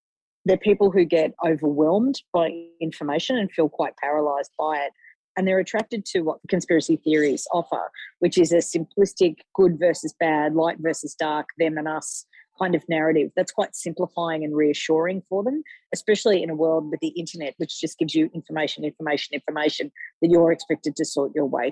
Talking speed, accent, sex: 180 wpm, Australian, female